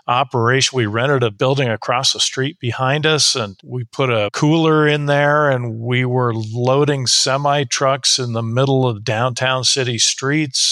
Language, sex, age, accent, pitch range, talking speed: English, male, 50-69, American, 115-140 Hz, 170 wpm